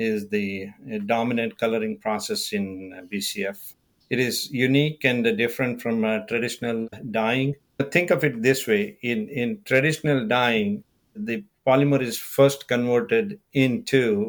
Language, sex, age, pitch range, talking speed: English, male, 60-79, 115-150 Hz, 130 wpm